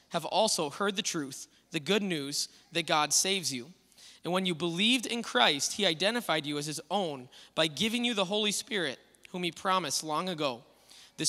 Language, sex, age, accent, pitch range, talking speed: English, male, 20-39, American, 155-190 Hz, 190 wpm